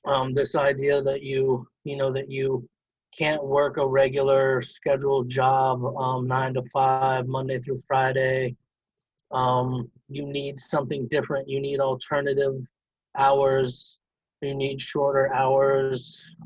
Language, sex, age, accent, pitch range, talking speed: English, male, 30-49, American, 130-140 Hz, 130 wpm